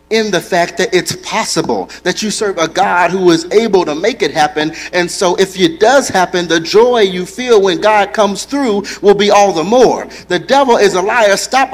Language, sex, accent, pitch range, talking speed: English, male, American, 150-215 Hz, 220 wpm